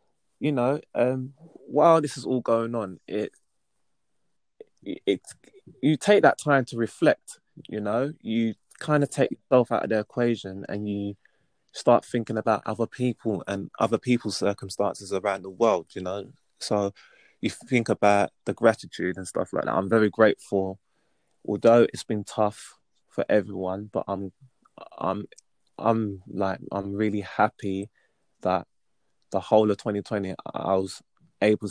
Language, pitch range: English, 95-115 Hz